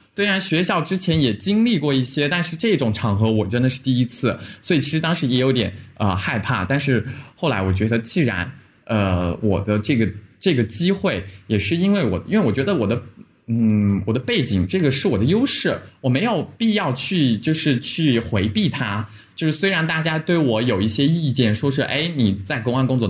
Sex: male